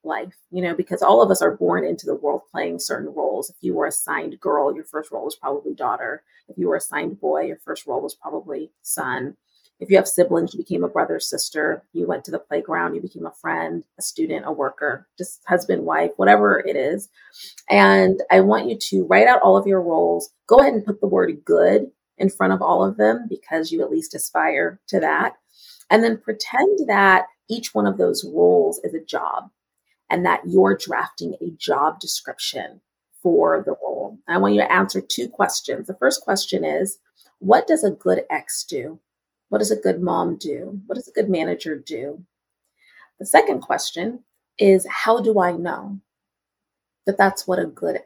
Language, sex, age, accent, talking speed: English, female, 30-49, American, 200 wpm